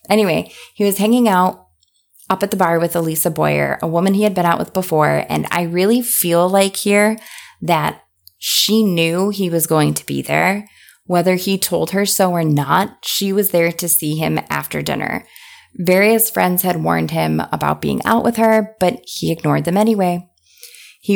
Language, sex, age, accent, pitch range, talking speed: English, female, 20-39, American, 155-200 Hz, 185 wpm